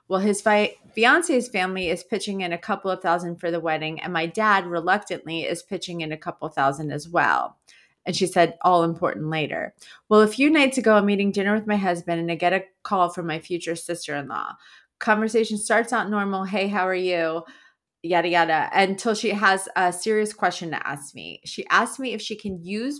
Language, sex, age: English, female, 30-49